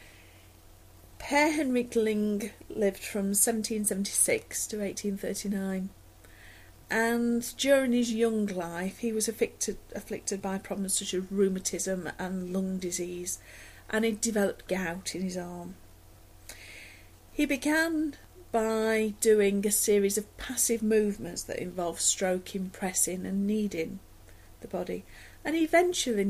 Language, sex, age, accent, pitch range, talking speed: English, female, 40-59, British, 165-220 Hz, 120 wpm